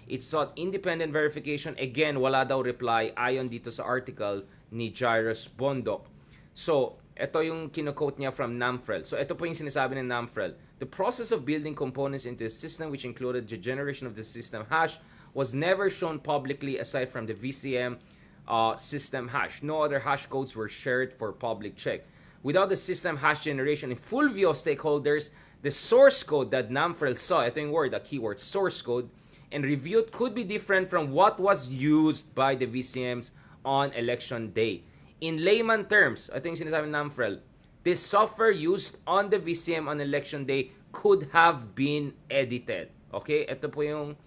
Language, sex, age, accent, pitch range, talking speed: English, male, 20-39, Filipino, 125-155 Hz, 175 wpm